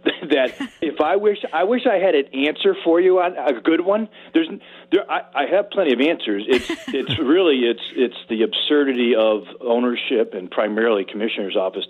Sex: male